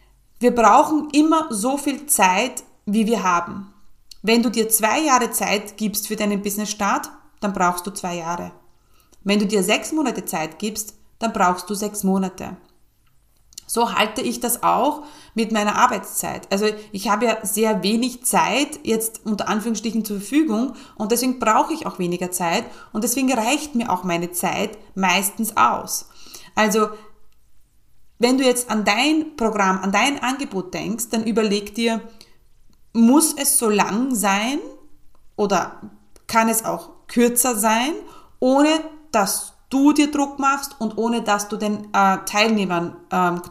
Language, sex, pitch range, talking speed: German, female, 205-250 Hz, 155 wpm